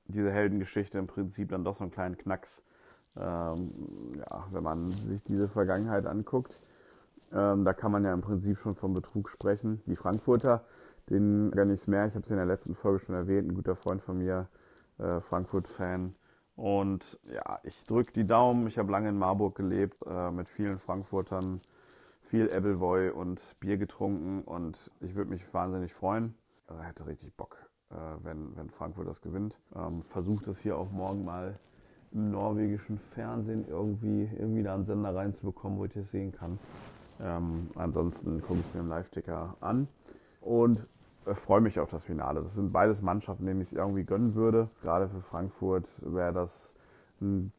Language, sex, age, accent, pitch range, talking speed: German, male, 30-49, German, 90-105 Hz, 175 wpm